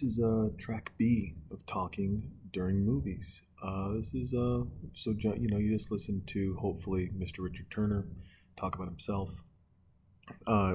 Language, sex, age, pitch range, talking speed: English, male, 40-59, 85-95 Hz, 175 wpm